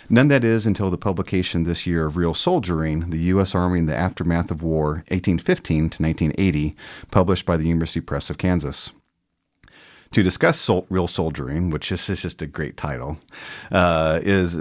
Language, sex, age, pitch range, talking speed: English, male, 40-59, 80-100 Hz, 165 wpm